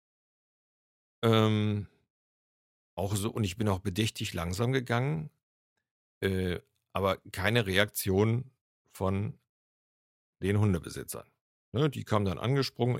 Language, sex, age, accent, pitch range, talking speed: German, male, 50-69, German, 90-110 Hz, 100 wpm